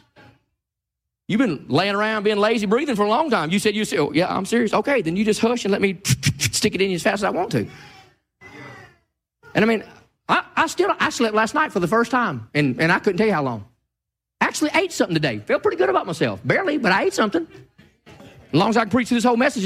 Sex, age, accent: male, 40-59, American